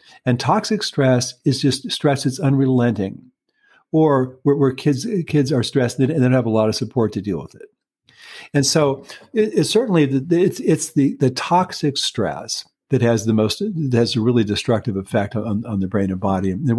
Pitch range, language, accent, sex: 115-150 Hz, English, American, male